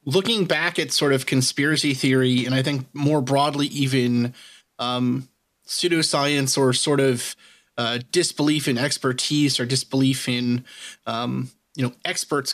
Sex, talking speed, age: male, 140 wpm, 30-49